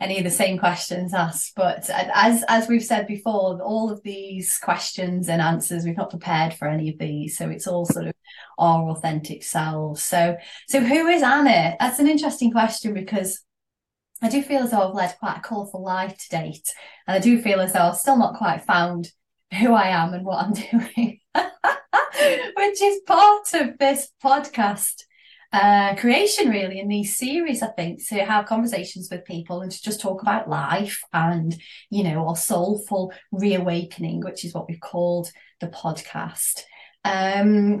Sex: female